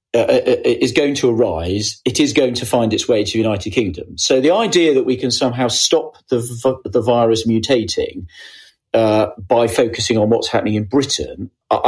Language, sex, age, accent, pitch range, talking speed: English, male, 40-59, British, 115-180 Hz, 190 wpm